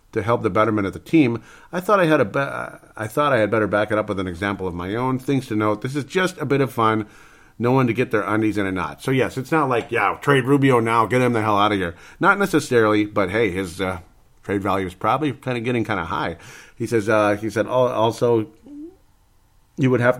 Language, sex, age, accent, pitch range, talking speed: English, male, 40-59, American, 95-125 Hz, 260 wpm